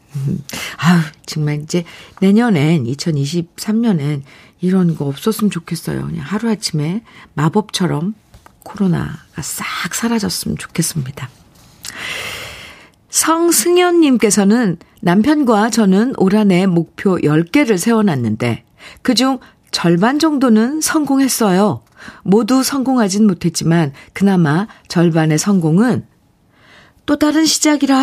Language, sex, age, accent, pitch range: Korean, female, 50-69, native, 155-220 Hz